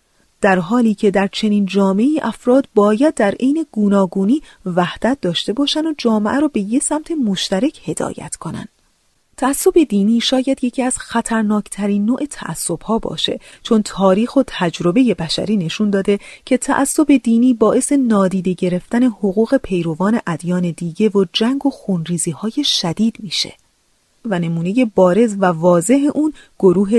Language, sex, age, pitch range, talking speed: Persian, female, 30-49, 190-250 Hz, 145 wpm